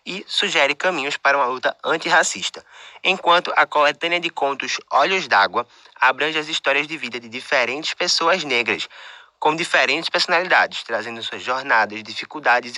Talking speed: 140 wpm